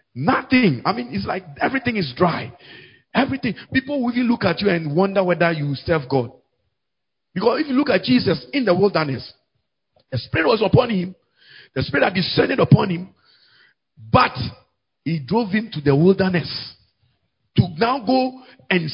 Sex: male